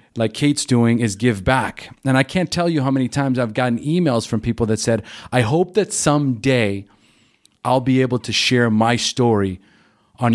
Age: 40-59